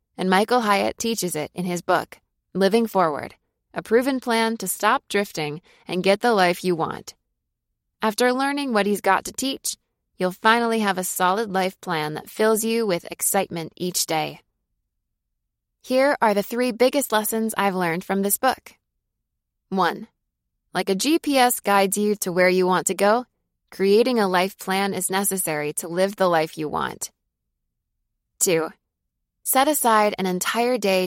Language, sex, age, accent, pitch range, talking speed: English, female, 20-39, American, 180-225 Hz, 160 wpm